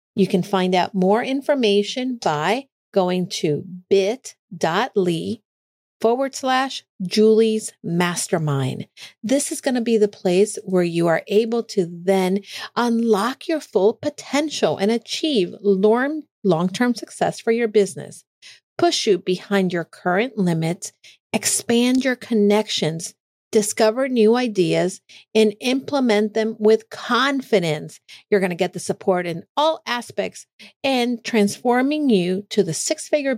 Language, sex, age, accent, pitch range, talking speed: English, female, 50-69, American, 185-235 Hz, 125 wpm